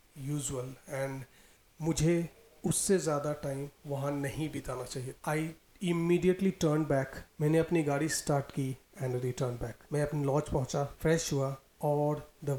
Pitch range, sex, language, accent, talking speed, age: 125-145 Hz, male, Hindi, native, 135 wpm, 30-49